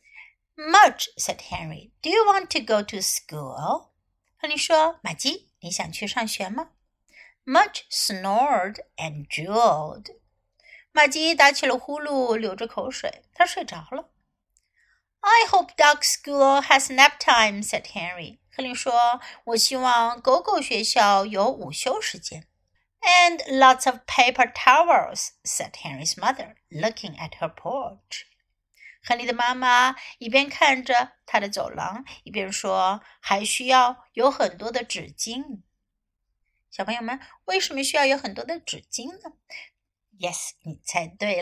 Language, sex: Chinese, female